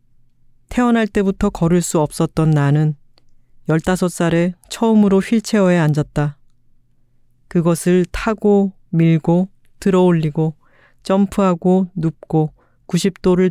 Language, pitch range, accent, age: Korean, 140-185 Hz, native, 40-59